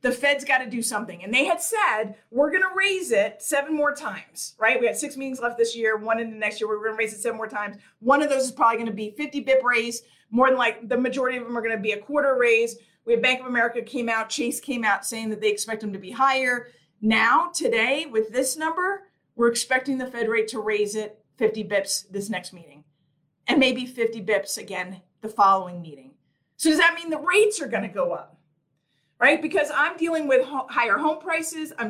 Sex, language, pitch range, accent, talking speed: female, English, 215-275 Hz, American, 240 wpm